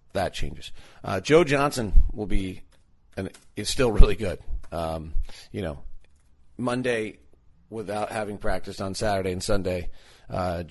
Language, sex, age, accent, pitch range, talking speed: English, male, 40-59, American, 85-105 Hz, 135 wpm